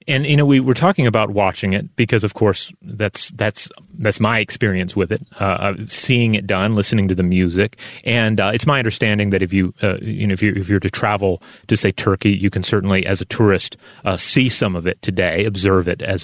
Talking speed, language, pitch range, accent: 220 wpm, English, 95-120 Hz, American